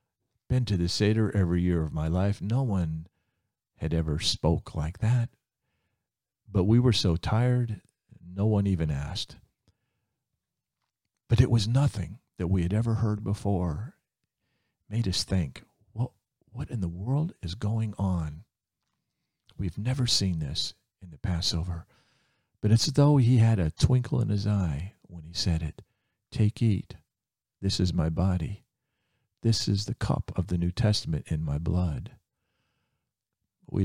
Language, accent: English, American